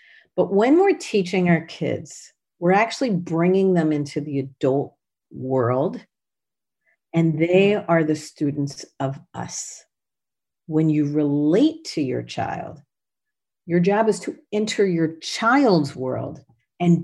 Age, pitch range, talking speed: 50-69, 140-185 Hz, 125 wpm